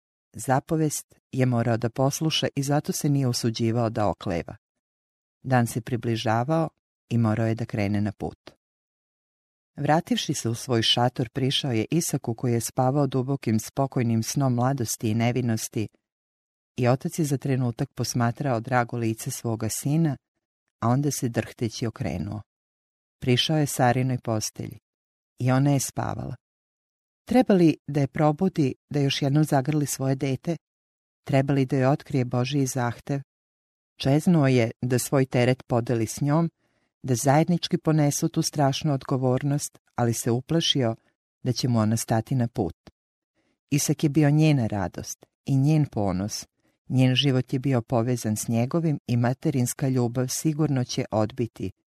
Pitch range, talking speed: 115-145 Hz, 140 wpm